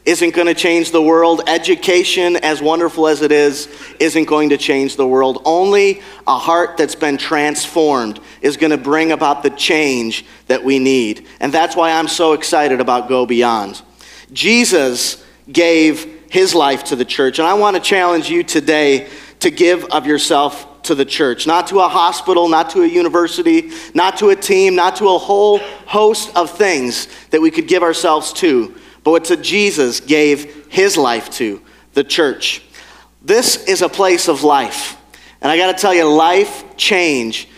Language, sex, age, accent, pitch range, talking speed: English, male, 40-59, American, 145-190 Hz, 175 wpm